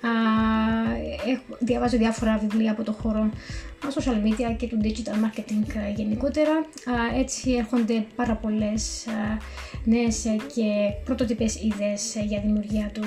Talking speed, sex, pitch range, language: 135 wpm, female, 215-245 Hz, Greek